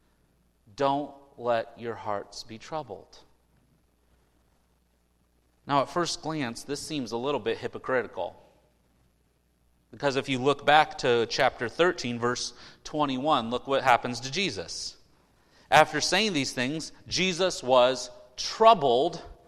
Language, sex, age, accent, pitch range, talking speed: English, male, 30-49, American, 110-175 Hz, 115 wpm